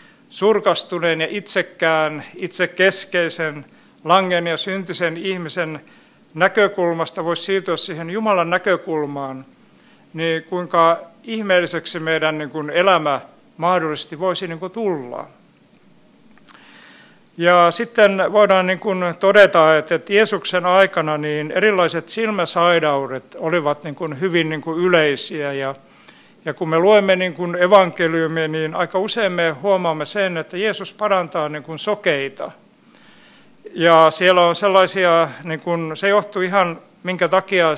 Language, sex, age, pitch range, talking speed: Finnish, male, 60-79, 160-185 Hz, 100 wpm